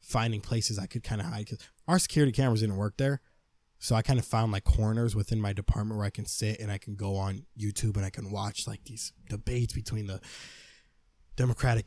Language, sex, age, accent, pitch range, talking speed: English, male, 10-29, American, 95-115 Hz, 220 wpm